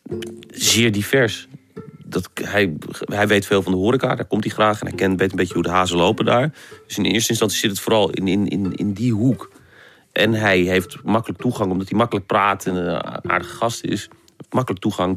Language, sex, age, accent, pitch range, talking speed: Dutch, male, 40-59, Dutch, 95-115 Hz, 210 wpm